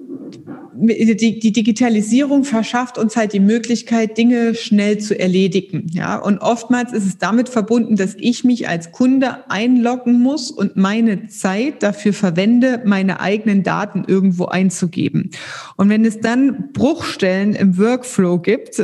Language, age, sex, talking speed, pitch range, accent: German, 40-59, female, 135 wpm, 205-245 Hz, German